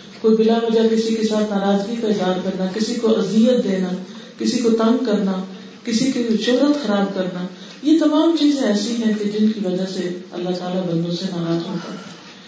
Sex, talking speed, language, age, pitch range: female, 185 wpm, Urdu, 40-59, 180-220 Hz